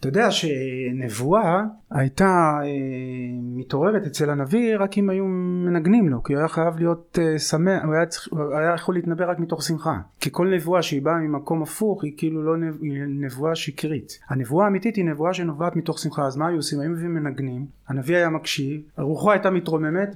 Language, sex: Hebrew, male